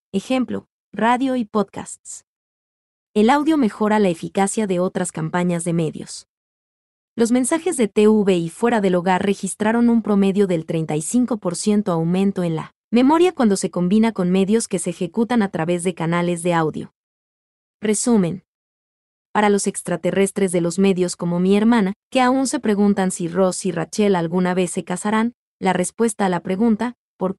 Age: 20-39